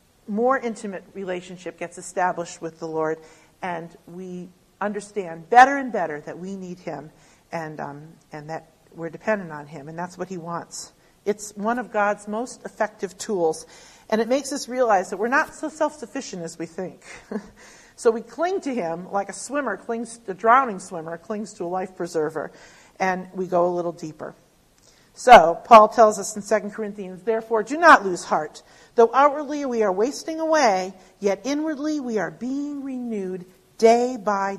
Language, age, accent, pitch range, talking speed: English, 50-69, American, 175-245 Hz, 175 wpm